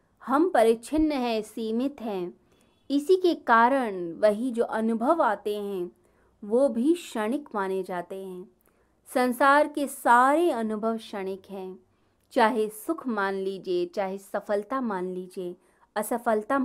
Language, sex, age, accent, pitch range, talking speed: Hindi, female, 20-39, native, 200-275 Hz, 125 wpm